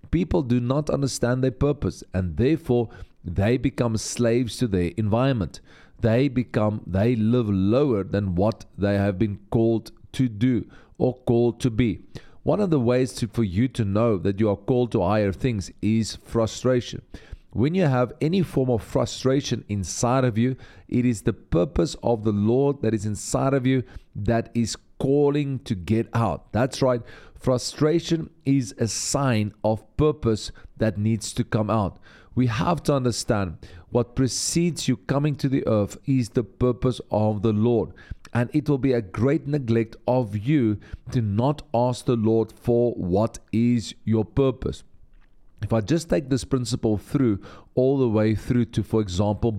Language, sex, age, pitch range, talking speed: English, male, 40-59, 105-130 Hz, 170 wpm